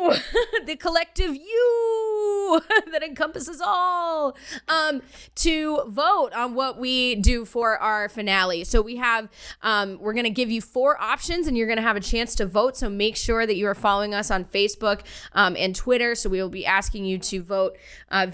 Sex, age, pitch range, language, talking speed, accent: female, 20-39, 190-245 Hz, English, 190 wpm, American